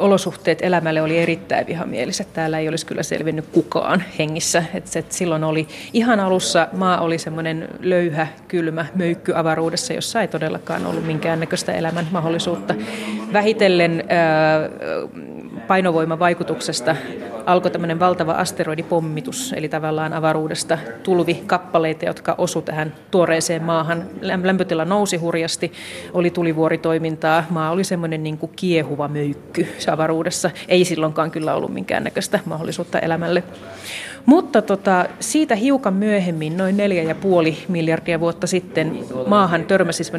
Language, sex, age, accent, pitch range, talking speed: Finnish, female, 30-49, native, 160-190 Hz, 110 wpm